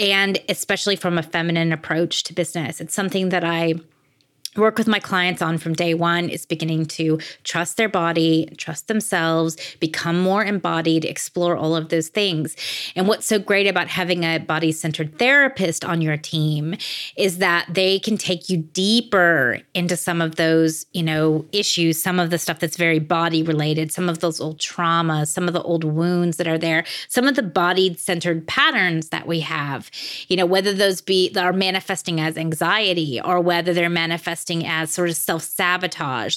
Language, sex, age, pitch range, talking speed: English, female, 30-49, 160-195 Hz, 180 wpm